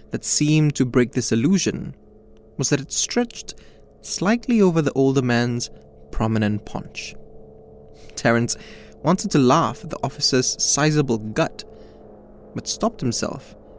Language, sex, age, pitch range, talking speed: English, male, 20-39, 95-145 Hz, 125 wpm